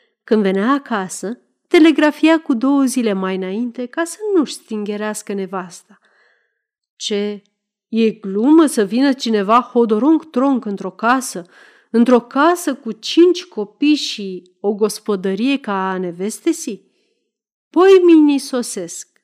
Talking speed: 110 wpm